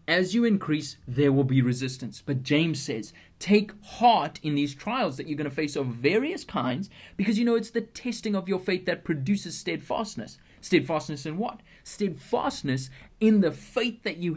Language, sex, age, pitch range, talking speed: English, male, 20-39, 140-190 Hz, 185 wpm